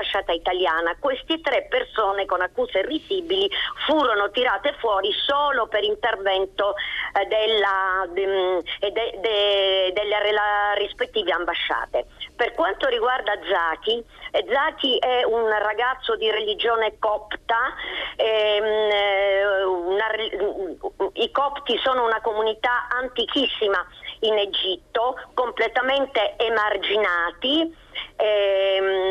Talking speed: 95 wpm